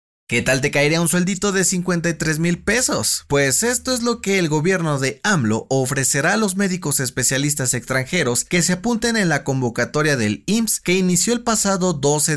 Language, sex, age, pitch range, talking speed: Spanish, male, 30-49, 125-170 Hz, 185 wpm